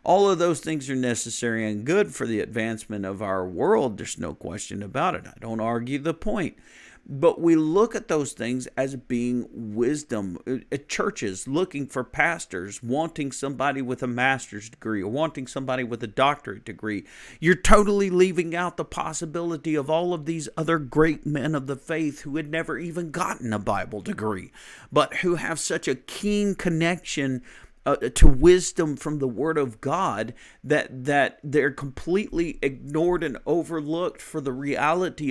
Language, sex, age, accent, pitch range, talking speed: English, male, 50-69, American, 130-170 Hz, 170 wpm